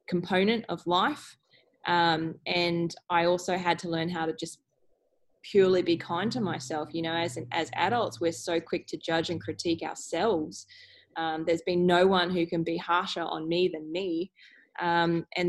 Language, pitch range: English, 165-190 Hz